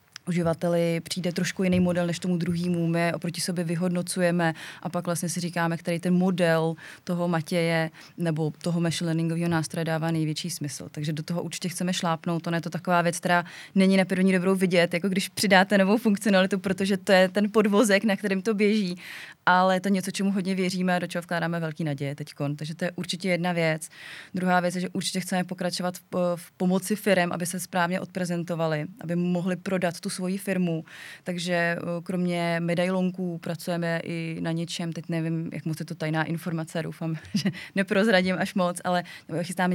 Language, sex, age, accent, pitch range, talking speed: Czech, female, 20-39, native, 165-185 Hz, 185 wpm